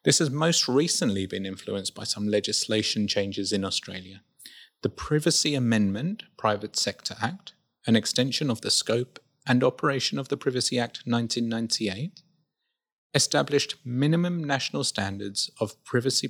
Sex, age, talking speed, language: male, 30-49, 135 wpm, English